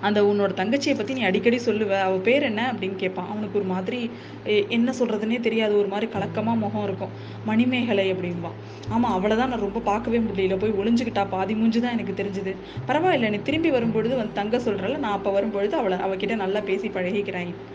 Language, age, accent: Tamil, 20-39, native